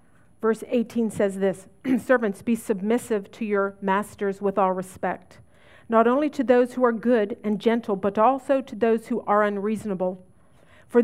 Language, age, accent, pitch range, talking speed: English, 50-69, American, 200-245 Hz, 165 wpm